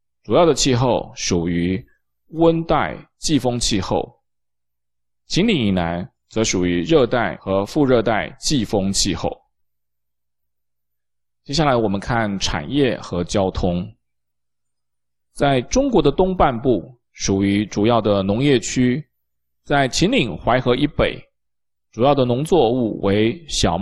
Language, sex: Chinese, male